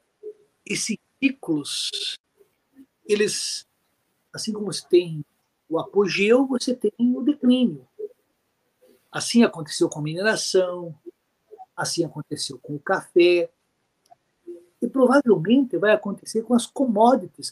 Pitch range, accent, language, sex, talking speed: 165-255 Hz, Brazilian, Portuguese, male, 100 wpm